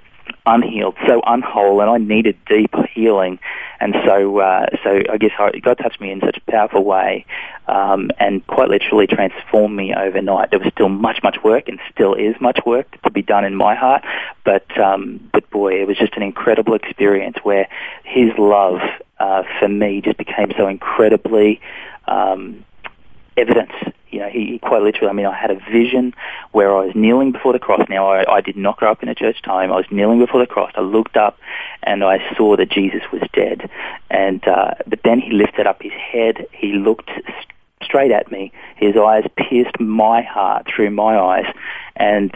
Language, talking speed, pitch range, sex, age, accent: English, 195 wpm, 100-110 Hz, male, 20-39, Australian